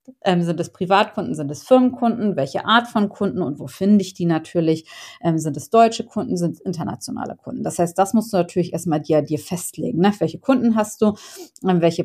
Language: German